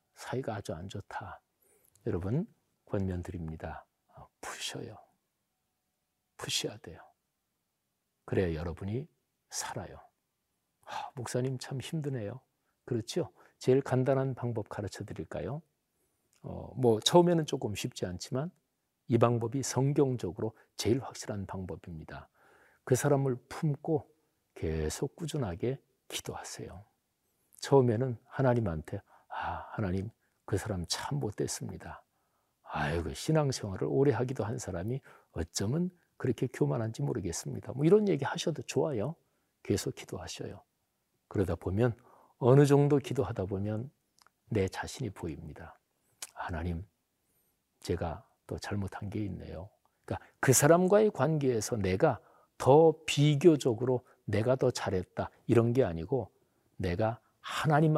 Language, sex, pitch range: Korean, male, 100-140 Hz